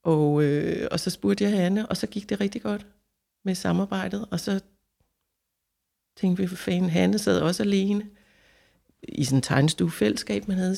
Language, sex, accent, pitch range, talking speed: Danish, female, native, 155-195 Hz, 175 wpm